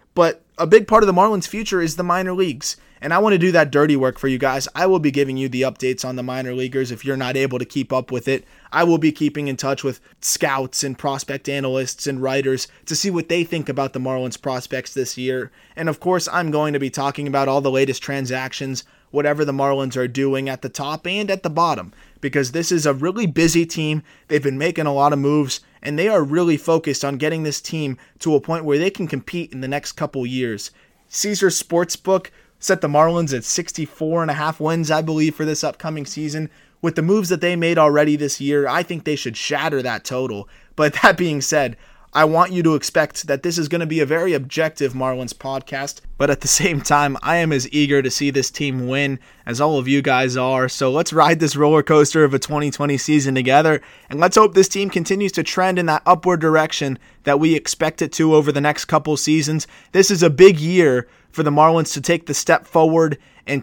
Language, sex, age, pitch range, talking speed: English, male, 20-39, 135-165 Hz, 230 wpm